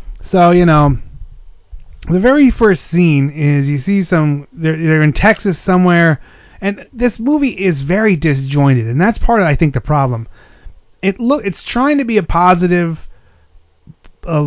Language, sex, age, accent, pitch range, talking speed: English, male, 30-49, American, 145-190 Hz, 160 wpm